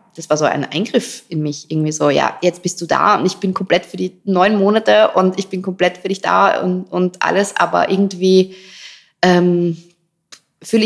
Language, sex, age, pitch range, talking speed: German, female, 20-39, 160-190 Hz, 200 wpm